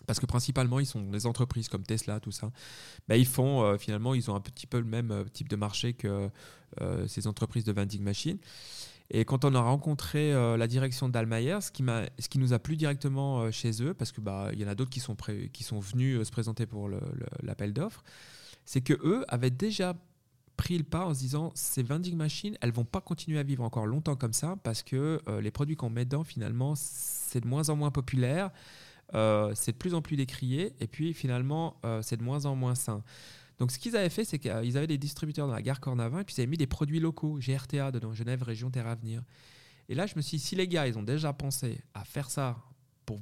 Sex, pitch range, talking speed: male, 110-145 Hz, 250 wpm